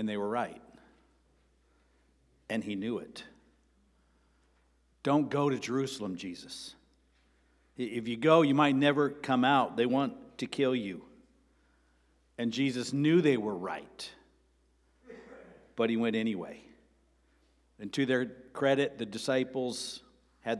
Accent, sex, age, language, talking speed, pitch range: American, male, 50-69, English, 125 wpm, 95-135 Hz